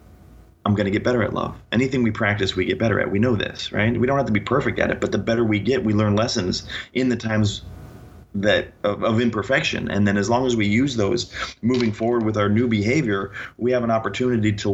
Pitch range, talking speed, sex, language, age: 100-120 Hz, 245 wpm, male, English, 30-49